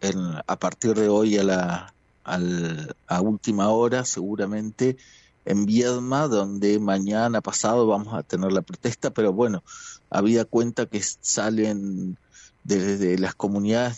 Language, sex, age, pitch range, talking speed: Spanish, male, 40-59, 100-125 Hz, 135 wpm